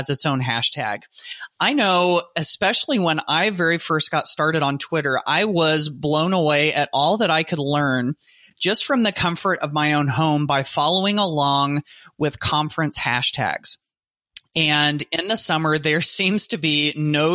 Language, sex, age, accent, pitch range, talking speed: English, male, 30-49, American, 145-175 Hz, 165 wpm